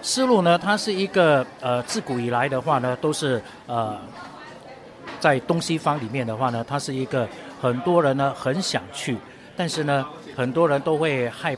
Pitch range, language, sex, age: 130-180 Hz, Chinese, male, 50-69